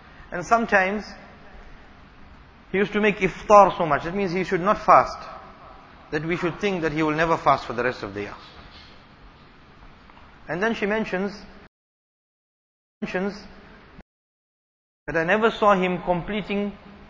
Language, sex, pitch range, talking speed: English, male, 135-190 Hz, 145 wpm